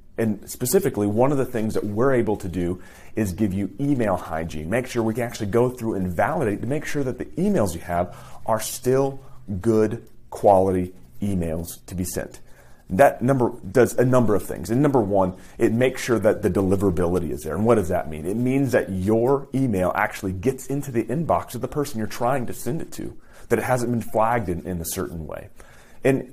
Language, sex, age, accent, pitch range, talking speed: English, male, 30-49, American, 90-125 Hz, 215 wpm